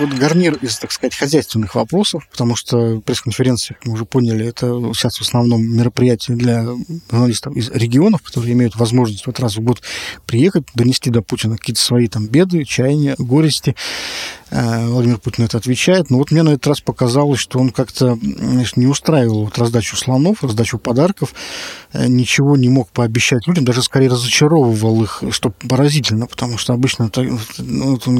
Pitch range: 115-135 Hz